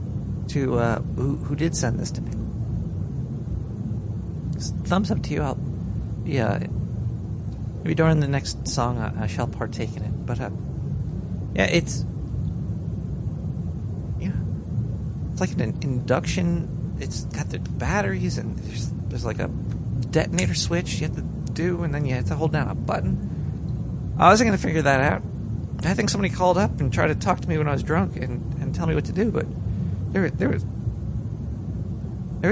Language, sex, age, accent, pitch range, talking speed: English, male, 40-59, American, 110-145 Hz, 175 wpm